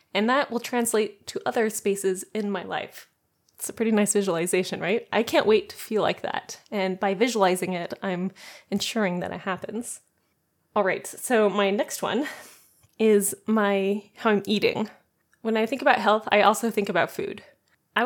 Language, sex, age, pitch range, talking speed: English, female, 20-39, 195-225 Hz, 180 wpm